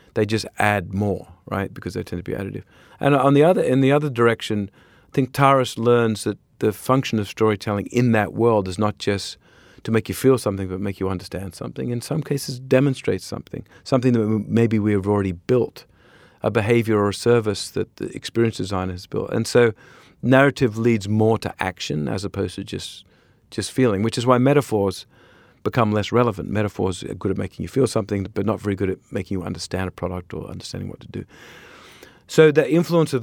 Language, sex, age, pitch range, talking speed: English, male, 50-69, 100-120 Hz, 205 wpm